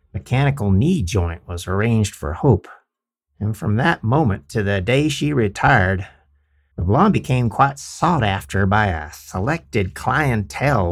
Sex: male